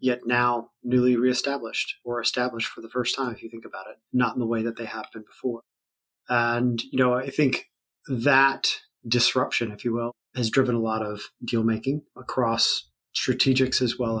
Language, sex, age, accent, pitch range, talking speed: English, male, 30-49, American, 115-130 Hz, 185 wpm